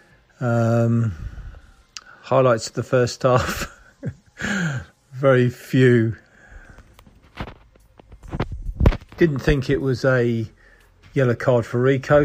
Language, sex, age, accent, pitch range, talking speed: English, male, 50-69, British, 115-130 Hz, 85 wpm